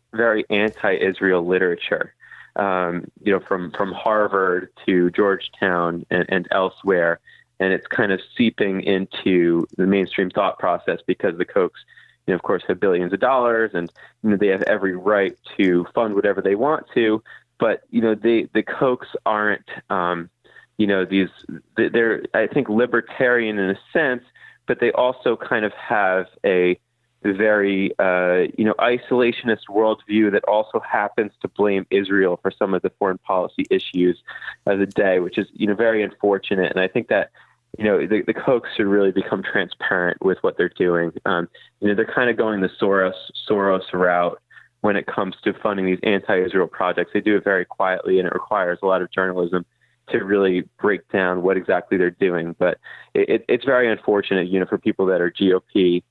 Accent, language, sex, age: American, English, male, 30-49